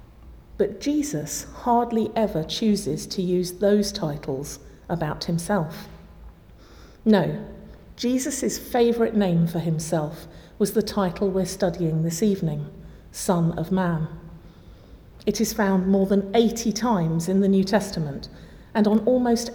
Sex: female